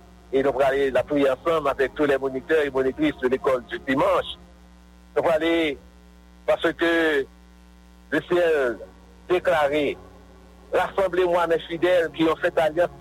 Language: English